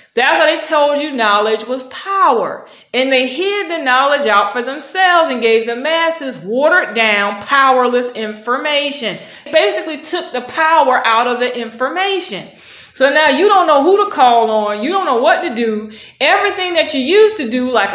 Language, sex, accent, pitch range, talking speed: English, female, American, 240-340 Hz, 185 wpm